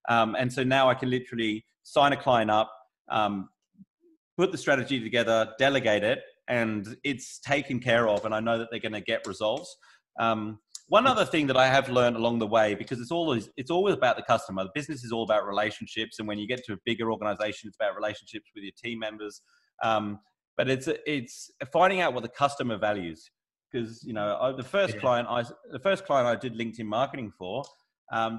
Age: 30-49